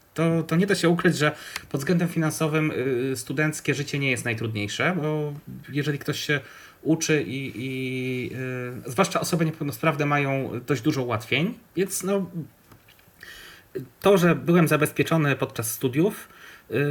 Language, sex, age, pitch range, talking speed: Polish, male, 30-49, 125-160 Hz, 130 wpm